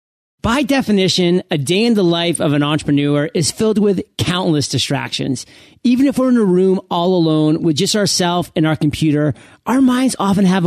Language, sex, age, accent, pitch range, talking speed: English, male, 30-49, American, 150-195 Hz, 185 wpm